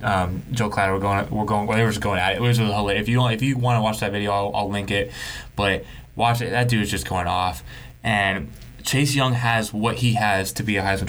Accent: American